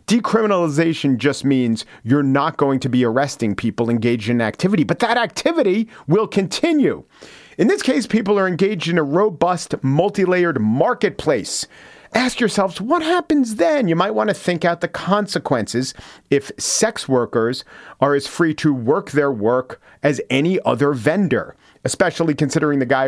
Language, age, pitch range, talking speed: English, 40-59, 130-175 Hz, 160 wpm